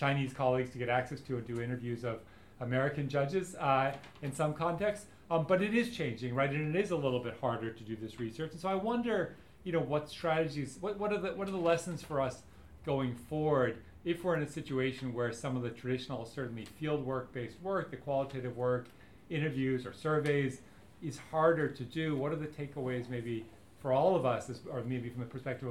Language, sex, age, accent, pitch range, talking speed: English, male, 40-59, American, 125-165 Hz, 215 wpm